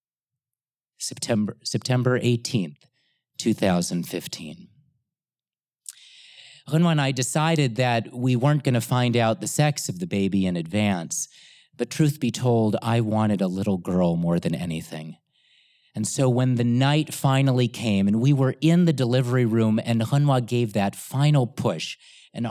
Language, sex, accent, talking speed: English, male, American, 145 wpm